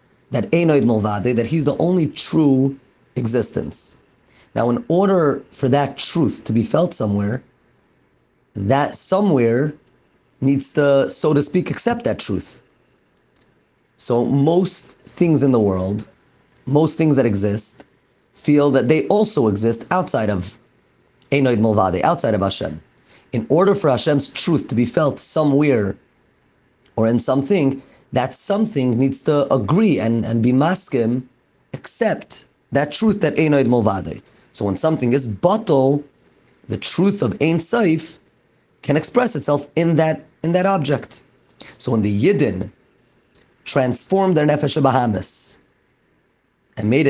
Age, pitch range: 30-49, 120-155 Hz